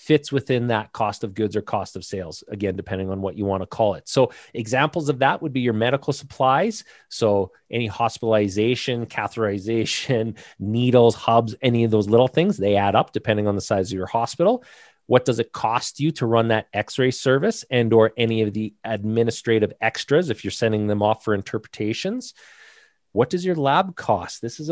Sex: male